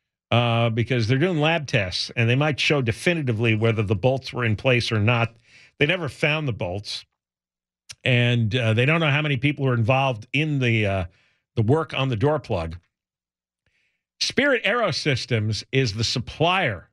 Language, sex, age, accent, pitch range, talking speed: English, male, 50-69, American, 115-155 Hz, 170 wpm